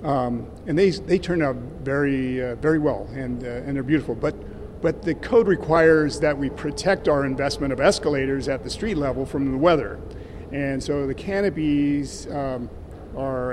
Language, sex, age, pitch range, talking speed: English, male, 50-69, 130-150 Hz, 175 wpm